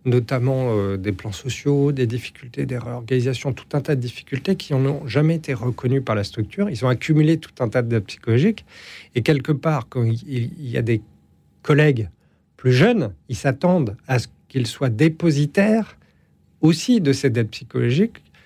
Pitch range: 115-150 Hz